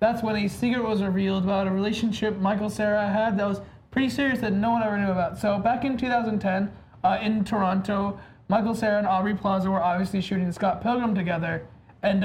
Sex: male